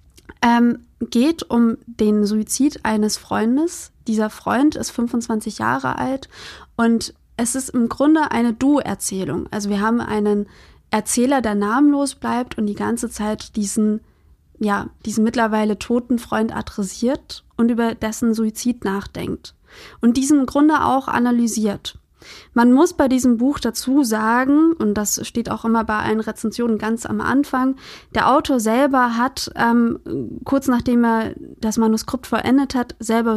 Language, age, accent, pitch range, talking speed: German, 20-39, German, 215-260 Hz, 145 wpm